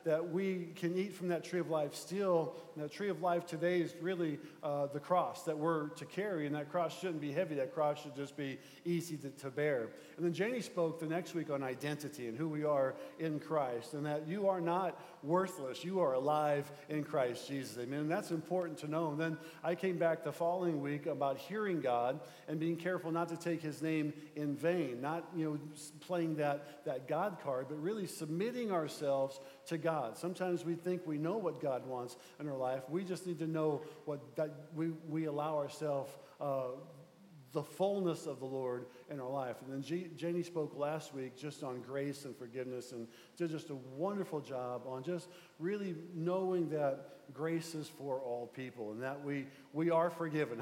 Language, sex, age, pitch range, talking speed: English, male, 50-69, 140-170 Hz, 205 wpm